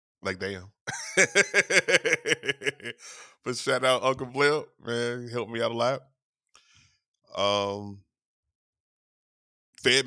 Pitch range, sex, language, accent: 100-125 Hz, male, English, American